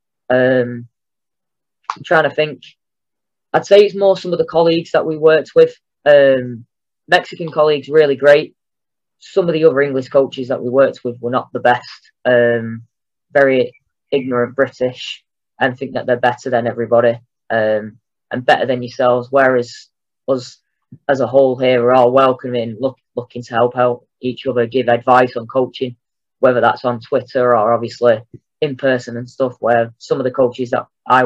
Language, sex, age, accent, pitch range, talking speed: English, female, 20-39, British, 115-135 Hz, 170 wpm